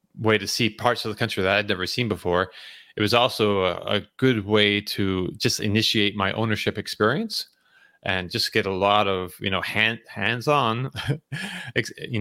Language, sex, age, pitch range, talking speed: English, male, 30-49, 95-120 Hz, 175 wpm